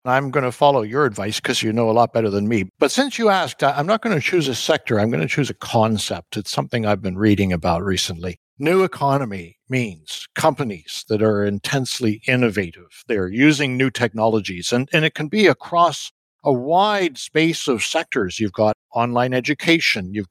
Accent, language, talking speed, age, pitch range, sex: American, English, 195 wpm, 60-79, 110-150 Hz, male